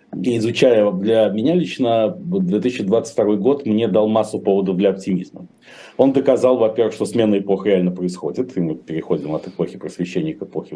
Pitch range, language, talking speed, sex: 95-110 Hz, Russian, 160 wpm, male